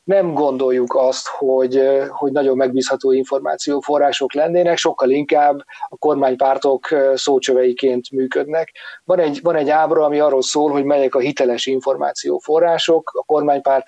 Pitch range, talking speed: 130-160 Hz, 130 wpm